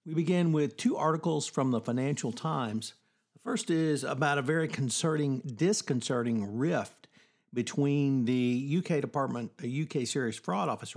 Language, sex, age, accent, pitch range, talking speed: English, male, 50-69, American, 115-145 Hz, 150 wpm